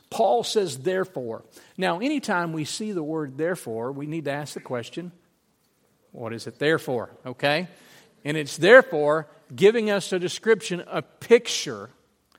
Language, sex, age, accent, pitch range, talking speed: English, male, 50-69, American, 140-190 Hz, 145 wpm